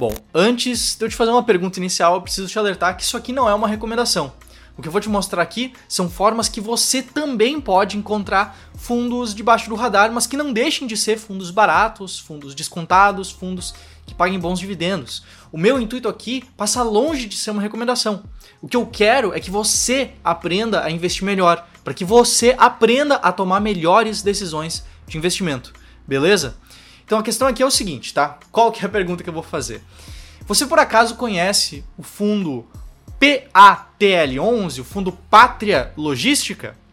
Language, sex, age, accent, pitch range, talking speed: Portuguese, male, 20-39, Brazilian, 180-240 Hz, 185 wpm